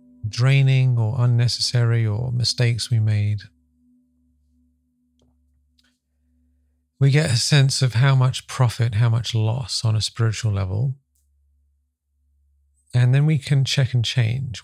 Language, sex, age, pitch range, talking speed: English, male, 40-59, 80-125 Hz, 120 wpm